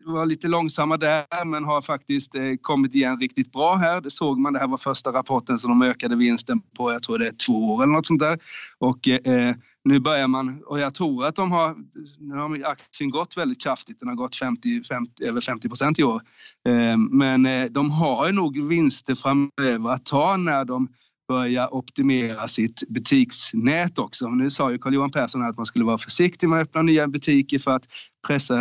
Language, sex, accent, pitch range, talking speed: Swedish, male, native, 130-175 Hz, 205 wpm